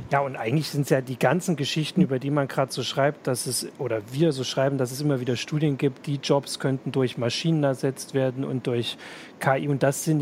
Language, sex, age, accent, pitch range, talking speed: German, male, 40-59, German, 135-165 Hz, 235 wpm